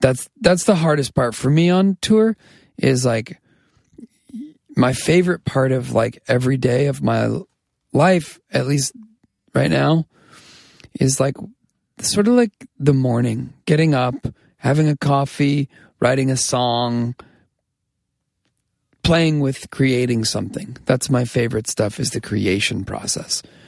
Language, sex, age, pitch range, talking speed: English, male, 40-59, 115-155 Hz, 130 wpm